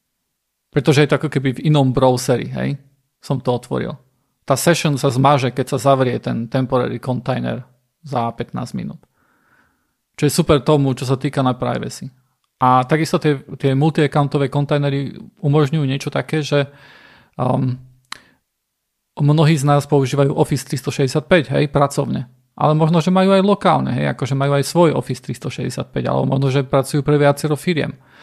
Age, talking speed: 40-59, 155 wpm